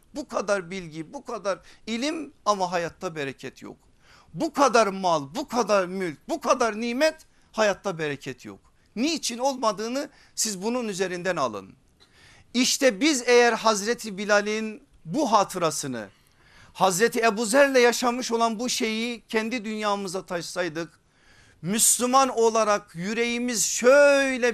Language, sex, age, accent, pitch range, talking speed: Turkish, male, 50-69, native, 180-245 Hz, 120 wpm